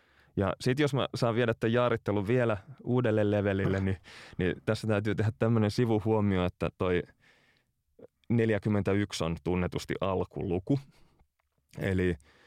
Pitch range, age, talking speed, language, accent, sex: 90-110 Hz, 20-39, 120 wpm, Finnish, native, male